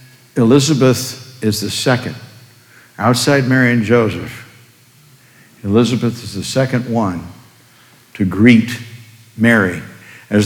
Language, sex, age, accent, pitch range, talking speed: English, male, 60-79, American, 115-135 Hz, 100 wpm